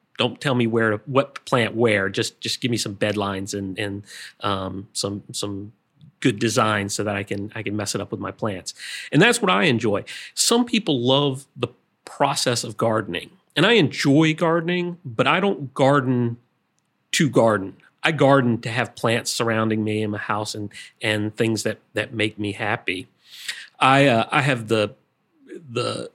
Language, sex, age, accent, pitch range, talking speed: English, male, 40-59, American, 105-130 Hz, 185 wpm